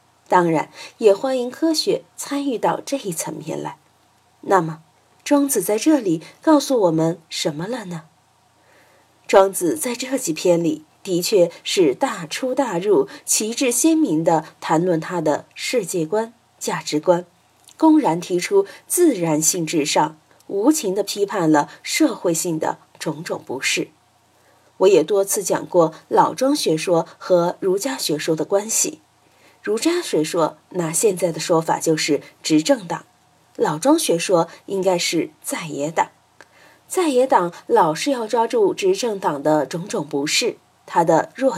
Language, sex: Chinese, female